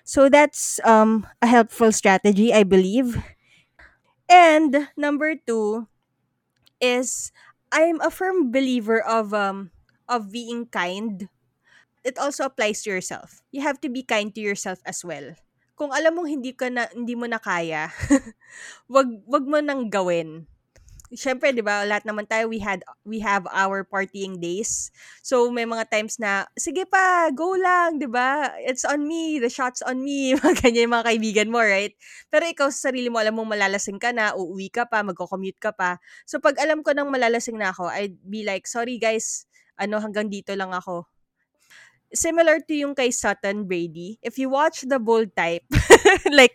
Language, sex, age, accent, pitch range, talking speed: Filipino, female, 20-39, native, 200-270 Hz, 170 wpm